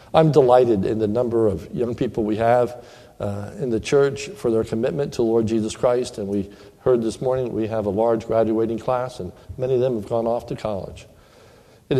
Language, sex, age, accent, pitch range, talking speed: English, male, 60-79, American, 110-135 Hz, 210 wpm